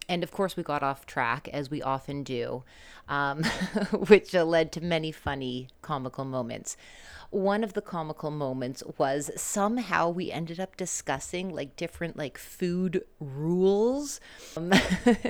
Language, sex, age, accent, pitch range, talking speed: English, female, 30-49, American, 140-180 Hz, 140 wpm